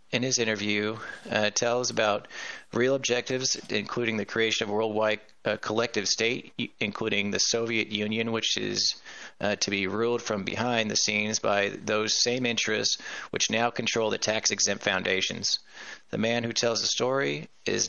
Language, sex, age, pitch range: English, male, 30-49, 105-120 Hz